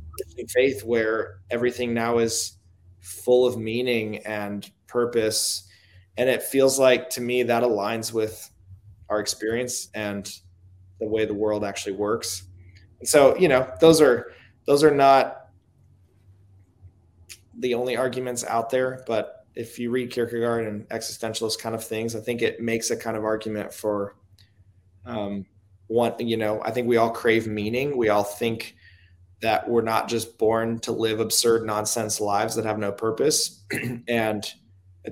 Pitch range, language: 100-120 Hz, English